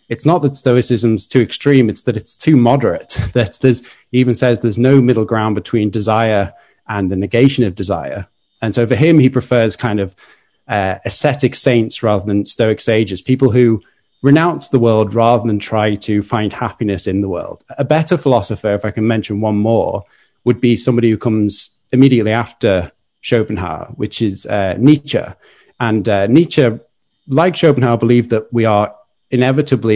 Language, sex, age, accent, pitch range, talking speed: English, male, 30-49, British, 105-130 Hz, 175 wpm